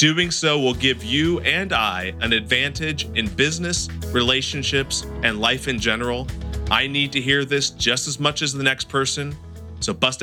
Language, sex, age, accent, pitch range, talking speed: English, male, 40-59, American, 120-155 Hz, 175 wpm